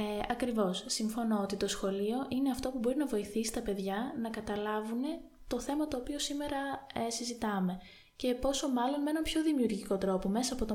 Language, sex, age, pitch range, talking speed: Greek, female, 20-39, 200-260 Hz, 190 wpm